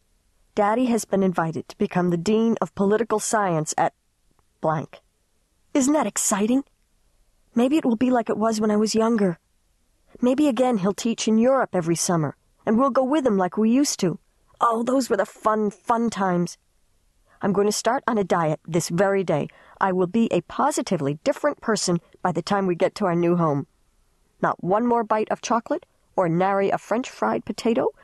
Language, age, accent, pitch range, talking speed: English, 40-59, American, 160-220 Hz, 190 wpm